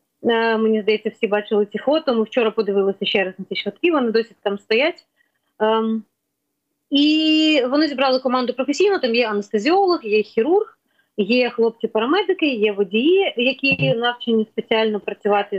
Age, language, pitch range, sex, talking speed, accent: 30-49, Ukrainian, 210-265 Hz, female, 140 wpm, native